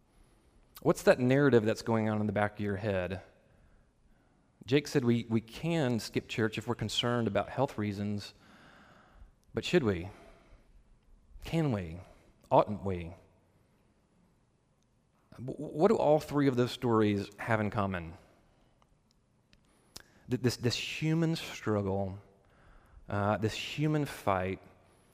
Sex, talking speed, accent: male, 120 wpm, American